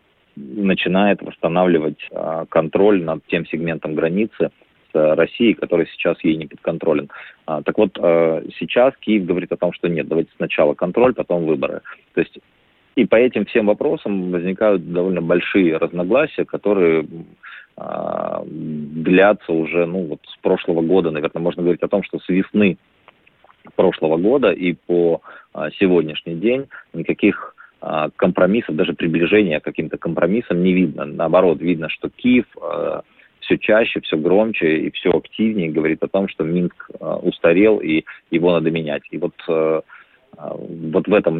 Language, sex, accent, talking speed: Russian, male, native, 145 wpm